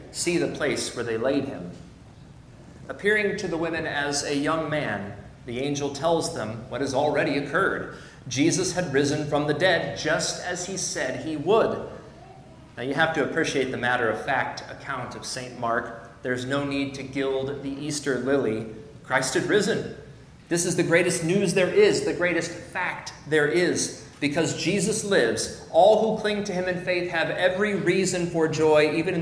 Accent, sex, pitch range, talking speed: American, male, 135-165 Hz, 175 wpm